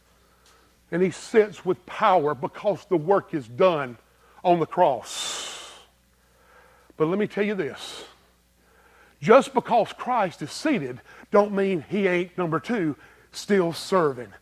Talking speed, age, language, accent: 135 wpm, 50-69, English, American